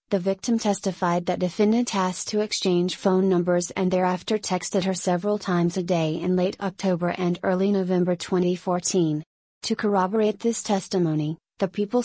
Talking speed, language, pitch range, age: 155 wpm, English, 180-205 Hz, 30-49